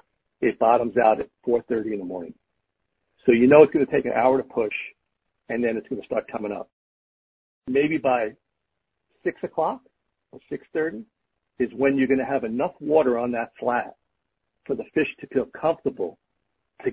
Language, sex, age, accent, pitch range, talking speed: English, male, 50-69, American, 120-145 Hz, 180 wpm